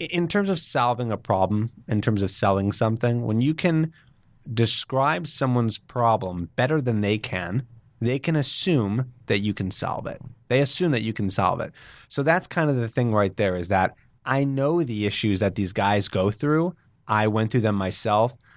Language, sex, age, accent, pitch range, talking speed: English, male, 20-39, American, 105-130 Hz, 195 wpm